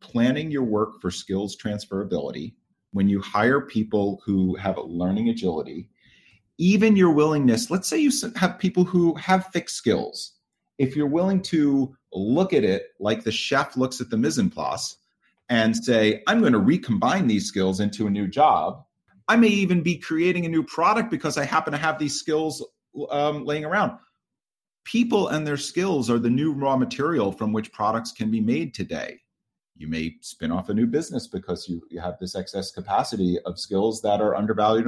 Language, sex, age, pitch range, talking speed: English, male, 40-59, 105-170 Hz, 185 wpm